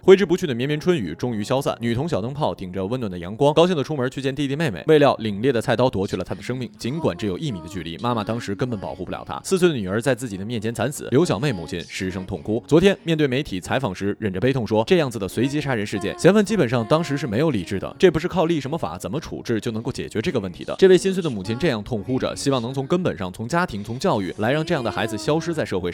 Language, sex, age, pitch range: Chinese, male, 20-39, 110-155 Hz